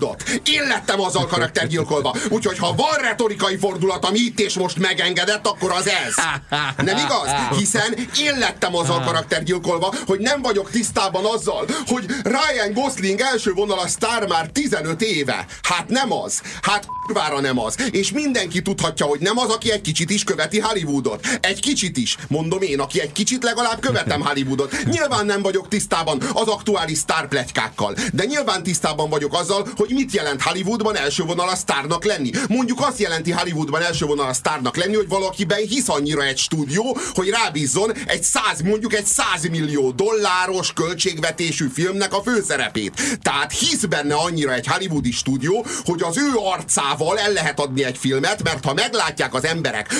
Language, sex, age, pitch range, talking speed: Hungarian, male, 40-59, 160-220 Hz, 165 wpm